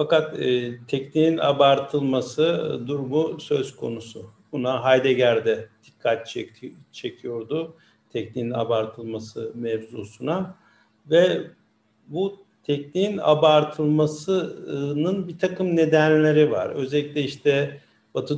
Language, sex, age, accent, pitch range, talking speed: Turkish, male, 50-69, native, 130-160 Hz, 90 wpm